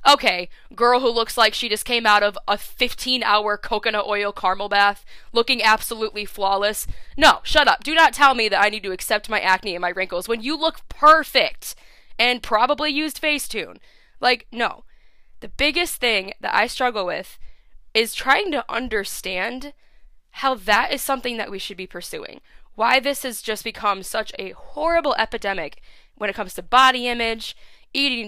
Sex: female